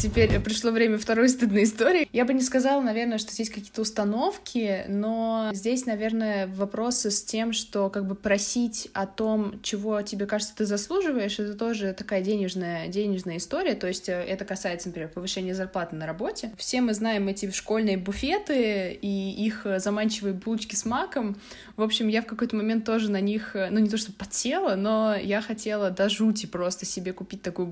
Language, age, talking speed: Russian, 20-39, 175 wpm